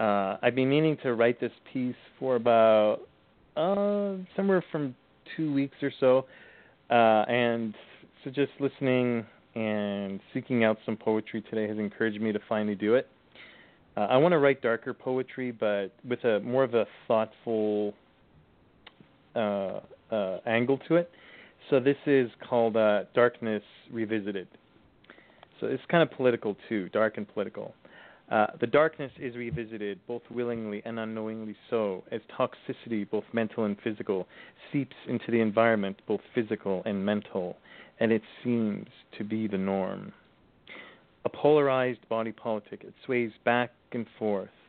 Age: 30-49